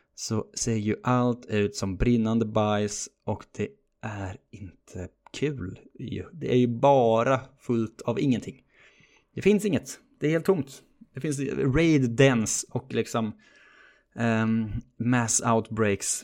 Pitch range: 110-130 Hz